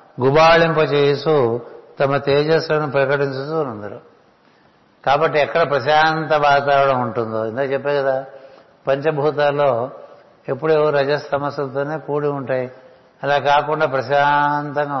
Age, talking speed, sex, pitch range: 60-79, 90 wpm, male, 125-150 Hz